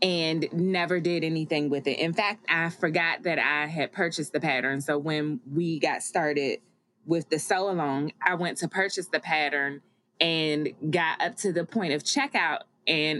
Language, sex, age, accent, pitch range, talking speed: English, female, 20-39, American, 155-200 Hz, 180 wpm